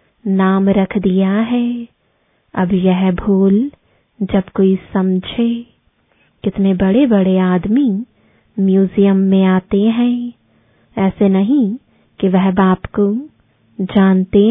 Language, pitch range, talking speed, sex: English, 190-235 Hz, 100 wpm, female